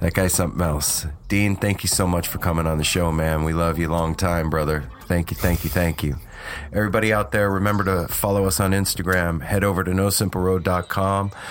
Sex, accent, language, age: male, American, English, 30-49